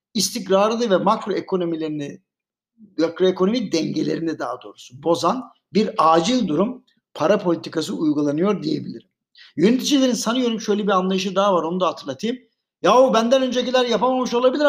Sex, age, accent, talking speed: male, 60-79, native, 130 wpm